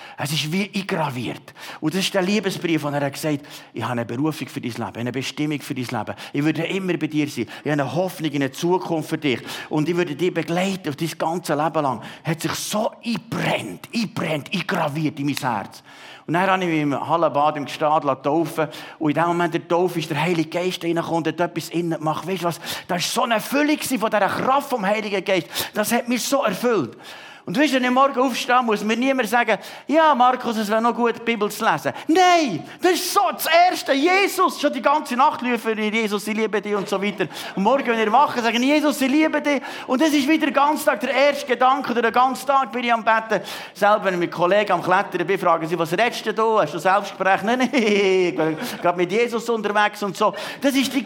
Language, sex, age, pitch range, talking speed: German, male, 50-69, 165-265 Hz, 240 wpm